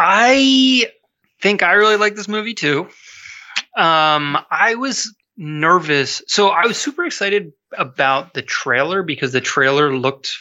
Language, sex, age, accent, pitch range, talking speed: English, male, 20-39, American, 125-185 Hz, 140 wpm